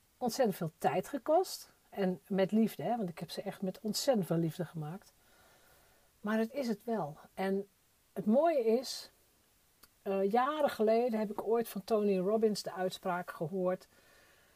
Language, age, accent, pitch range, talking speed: Dutch, 50-69, Dutch, 180-225 Hz, 160 wpm